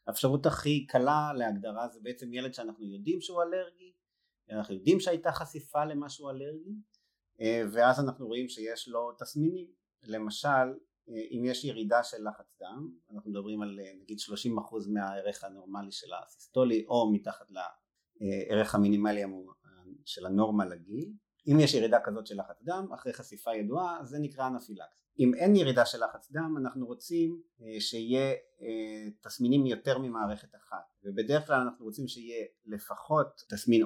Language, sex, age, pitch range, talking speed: Hebrew, male, 30-49, 105-140 Hz, 145 wpm